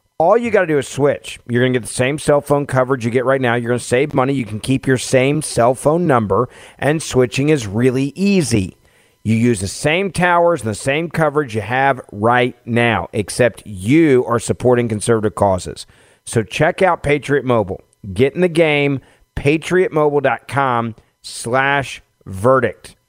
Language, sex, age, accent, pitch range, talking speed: English, male, 40-59, American, 115-150 Hz, 180 wpm